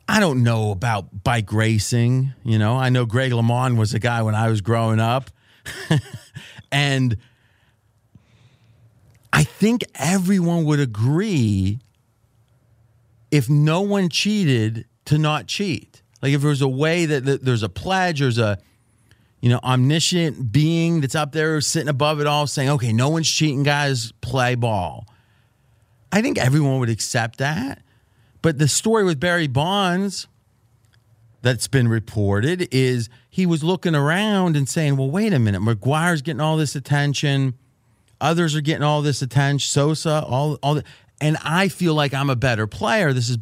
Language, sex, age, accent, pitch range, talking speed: English, male, 40-59, American, 115-150 Hz, 160 wpm